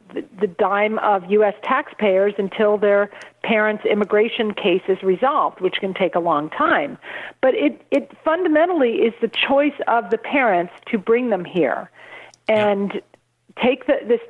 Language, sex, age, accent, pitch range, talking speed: English, female, 50-69, American, 195-245 Hz, 145 wpm